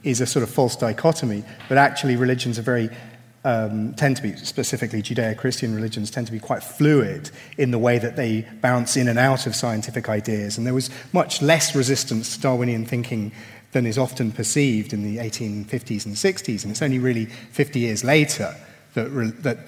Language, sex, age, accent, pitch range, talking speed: English, male, 30-49, British, 110-130 Hz, 190 wpm